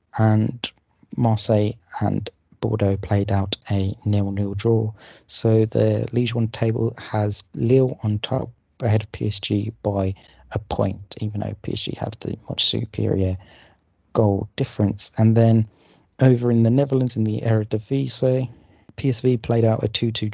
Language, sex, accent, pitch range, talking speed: English, male, British, 105-115 Hz, 135 wpm